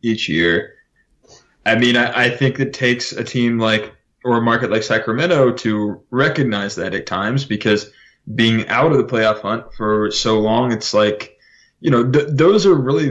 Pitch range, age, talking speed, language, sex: 110-130 Hz, 20-39, 185 wpm, English, male